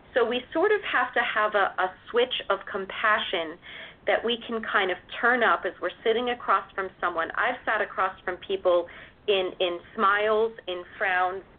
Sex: female